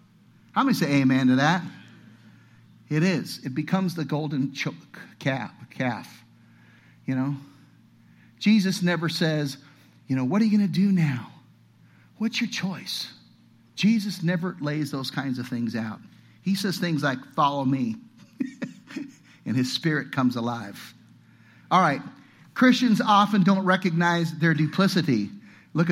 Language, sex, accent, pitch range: English, male, American, 145-215 Hz